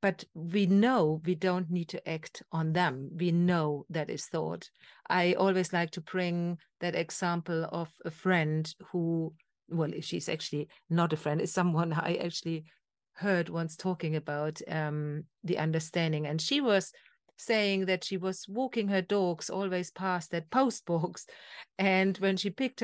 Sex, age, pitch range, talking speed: female, 40-59, 170-230 Hz, 165 wpm